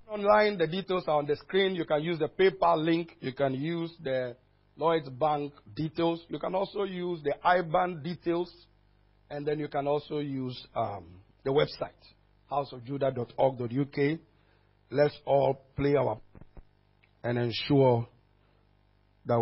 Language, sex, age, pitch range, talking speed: English, male, 50-69, 120-170 Hz, 135 wpm